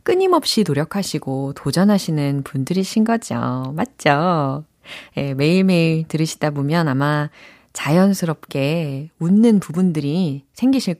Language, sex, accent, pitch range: Korean, female, native, 145-225 Hz